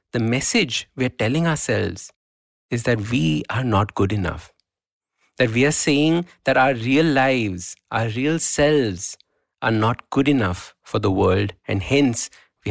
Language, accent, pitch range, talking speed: English, Indian, 105-140 Hz, 160 wpm